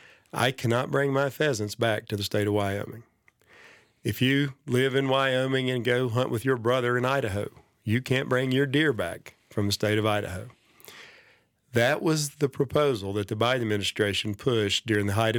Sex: male